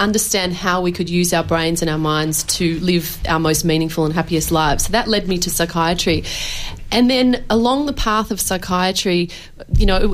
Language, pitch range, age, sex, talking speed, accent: English, 170-200 Hz, 30-49, female, 200 wpm, Australian